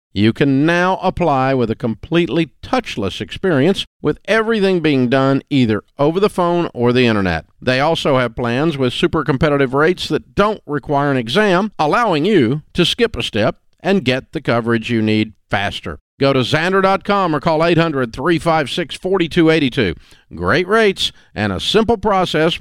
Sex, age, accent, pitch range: male, 50-69, American, 105-155 Hz